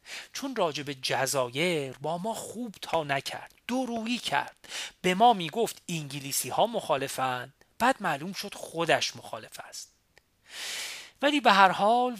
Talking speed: 130 wpm